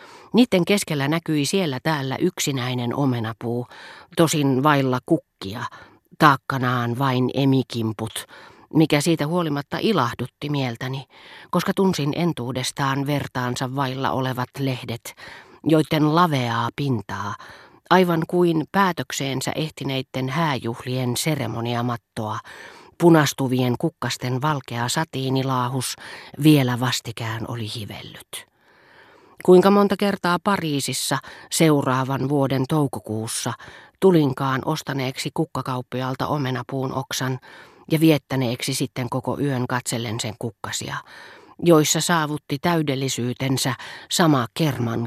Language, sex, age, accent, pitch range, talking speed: Finnish, female, 40-59, native, 125-155 Hz, 90 wpm